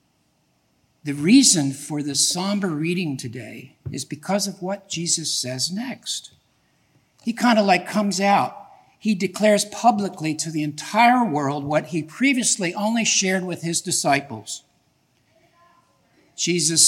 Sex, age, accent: male, 60-79, American